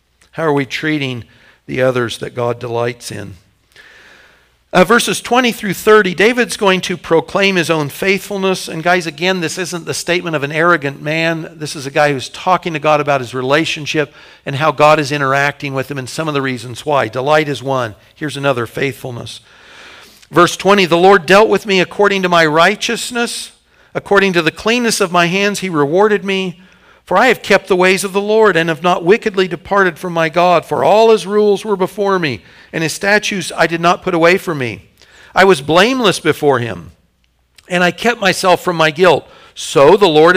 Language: English